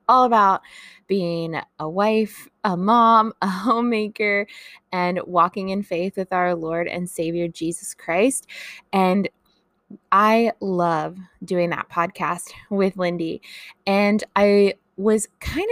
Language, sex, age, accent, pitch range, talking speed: English, female, 20-39, American, 175-220 Hz, 120 wpm